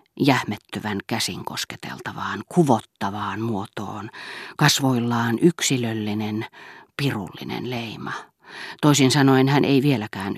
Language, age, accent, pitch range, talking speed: Finnish, 40-59, native, 115-145 Hz, 80 wpm